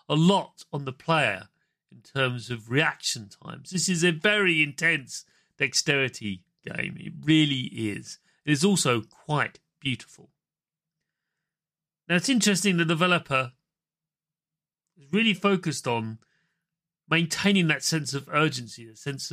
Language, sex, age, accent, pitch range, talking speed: English, male, 40-59, British, 130-180 Hz, 125 wpm